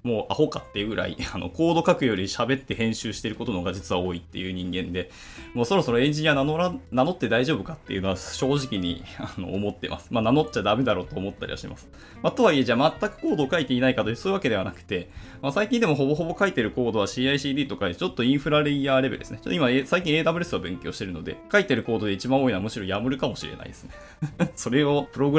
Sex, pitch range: male, 100-150 Hz